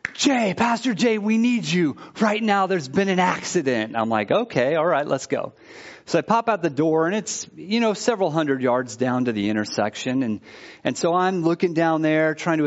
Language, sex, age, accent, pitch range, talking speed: English, male, 30-49, American, 130-180 Hz, 210 wpm